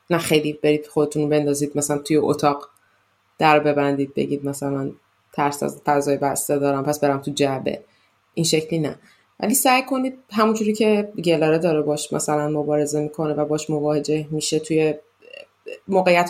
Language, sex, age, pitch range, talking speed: Persian, female, 20-39, 150-185 Hz, 150 wpm